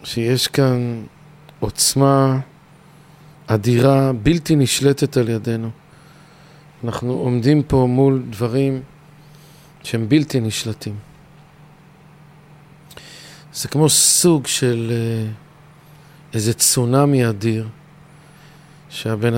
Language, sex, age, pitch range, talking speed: Hebrew, male, 50-69, 125-155 Hz, 75 wpm